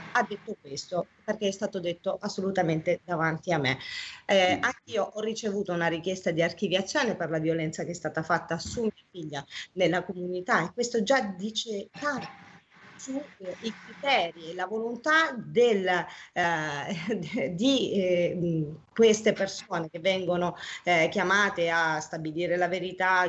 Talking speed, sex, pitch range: 145 wpm, female, 175-220 Hz